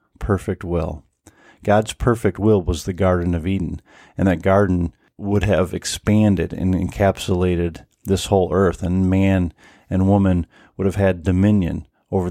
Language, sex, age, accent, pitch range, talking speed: English, male, 40-59, American, 90-105 Hz, 145 wpm